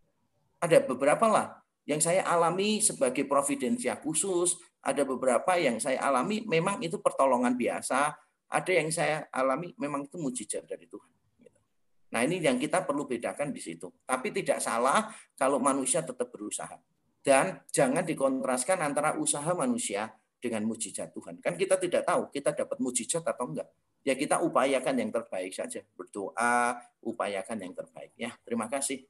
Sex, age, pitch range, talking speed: male, 40-59, 125-175 Hz, 150 wpm